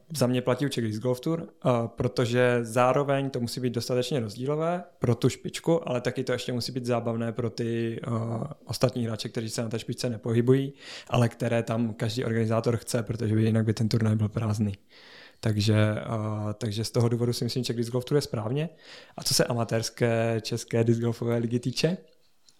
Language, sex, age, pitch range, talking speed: Czech, male, 20-39, 115-130 Hz, 190 wpm